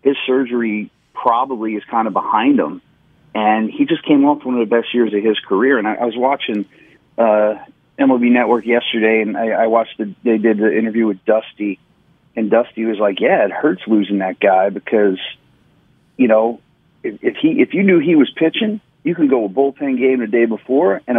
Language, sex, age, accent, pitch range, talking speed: English, male, 40-59, American, 105-130 Hz, 210 wpm